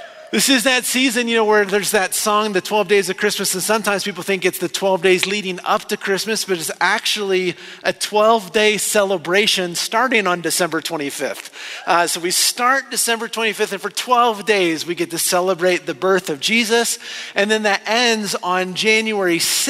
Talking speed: 185 wpm